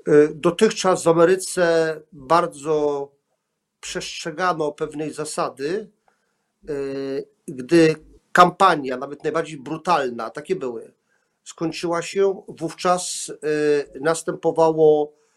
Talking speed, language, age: 70 wpm, Polish, 50-69